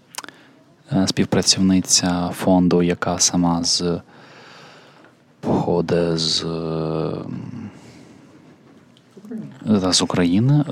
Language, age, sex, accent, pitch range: Ukrainian, 20-39, male, native, 90-105 Hz